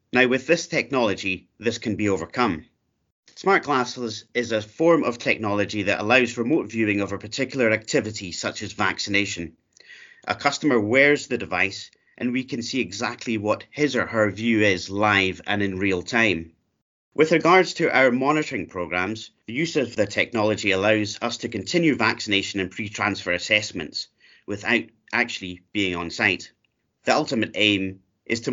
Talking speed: 160 wpm